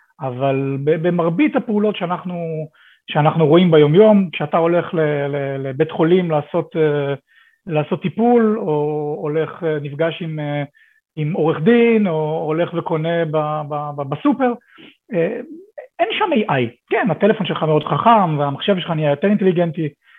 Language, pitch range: Hebrew, 155-215 Hz